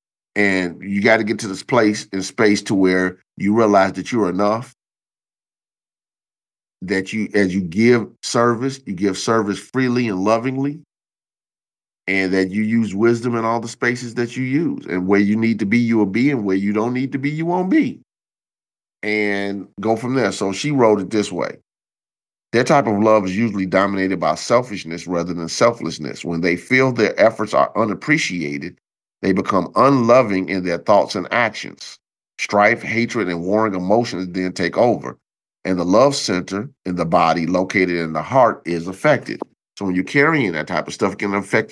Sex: male